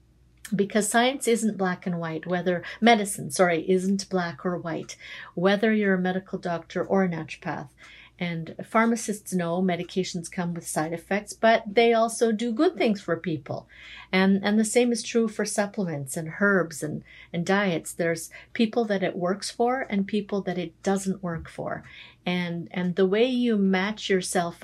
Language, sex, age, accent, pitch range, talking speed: English, female, 50-69, American, 170-205 Hz, 170 wpm